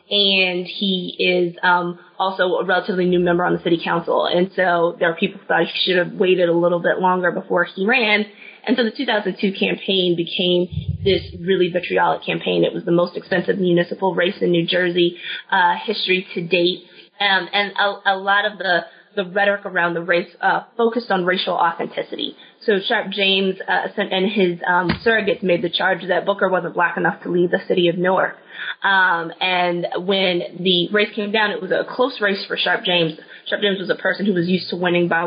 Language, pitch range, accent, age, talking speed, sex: English, 175-195 Hz, American, 20-39, 205 wpm, female